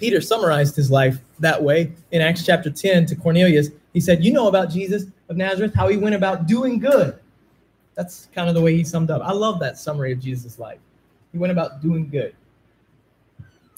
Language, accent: English, American